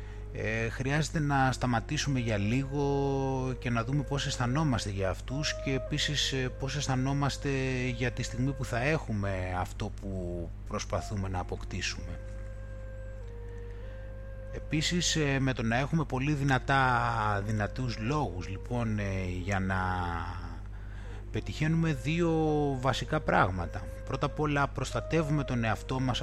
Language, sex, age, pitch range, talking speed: Greek, male, 30-49, 100-135 Hz, 115 wpm